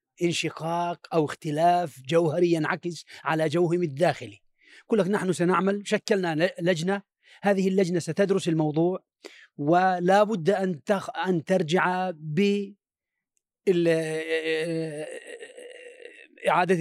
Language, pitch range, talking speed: Arabic, 165-215 Hz, 90 wpm